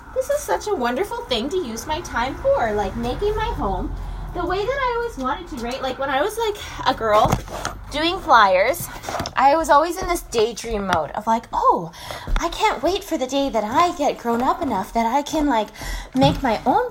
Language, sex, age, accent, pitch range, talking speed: English, female, 10-29, American, 260-365 Hz, 215 wpm